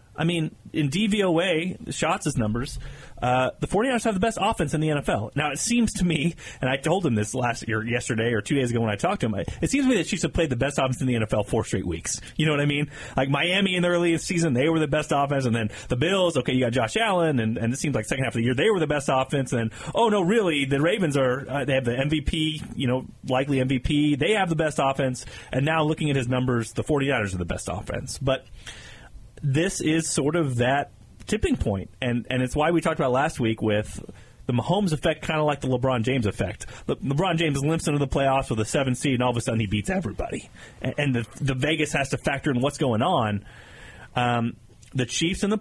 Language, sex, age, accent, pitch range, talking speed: English, male, 30-49, American, 120-160 Hz, 255 wpm